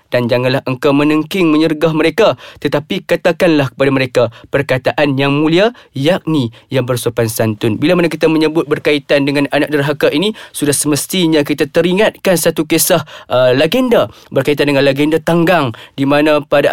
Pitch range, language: 150-195 Hz, Malay